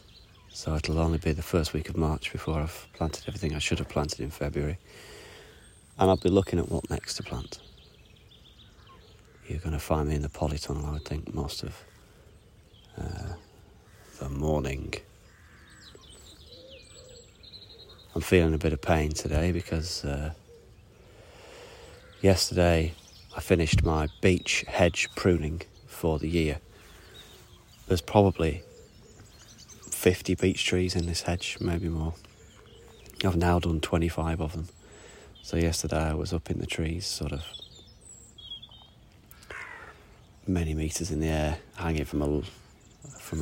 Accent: British